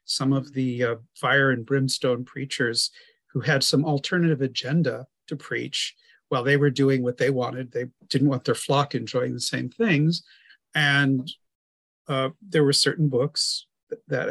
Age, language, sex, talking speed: 40-59, English, male, 165 wpm